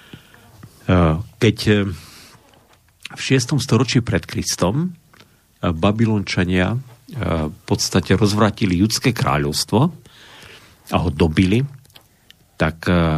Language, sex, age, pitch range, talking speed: Slovak, male, 50-69, 90-120 Hz, 75 wpm